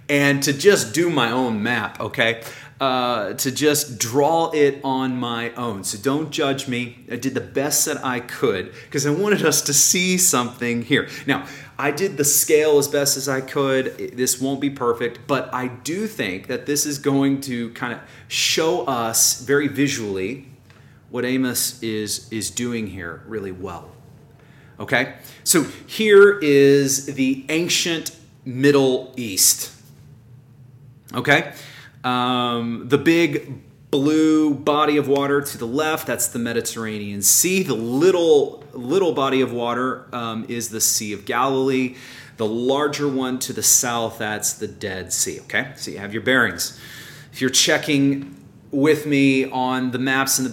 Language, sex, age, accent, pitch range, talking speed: English, male, 30-49, American, 120-145 Hz, 160 wpm